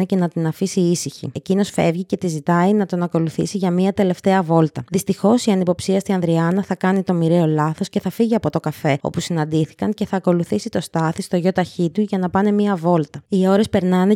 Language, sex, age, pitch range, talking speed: Greek, female, 20-39, 165-195 Hz, 220 wpm